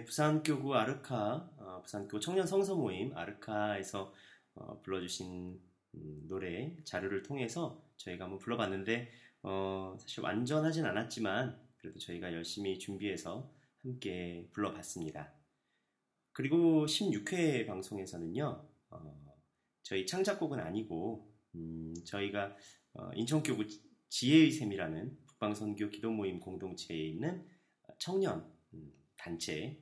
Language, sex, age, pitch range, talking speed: English, male, 30-49, 85-135 Hz, 95 wpm